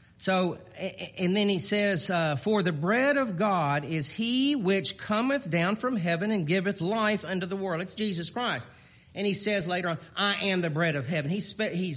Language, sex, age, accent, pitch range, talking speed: English, male, 40-59, American, 175-220 Hz, 205 wpm